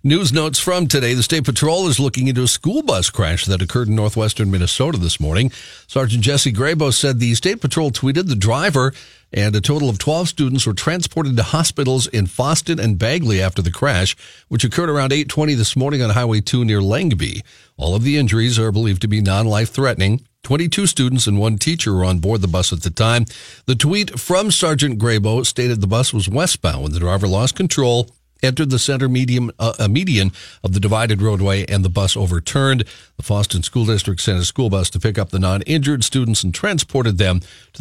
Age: 50-69